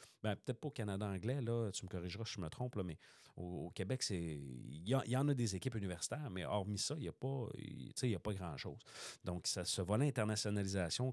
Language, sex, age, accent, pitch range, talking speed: French, male, 40-59, Canadian, 85-110 Hz, 230 wpm